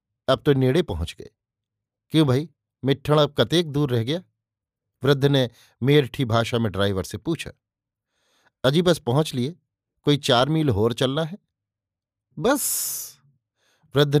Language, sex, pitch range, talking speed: Hindi, male, 110-145 Hz, 140 wpm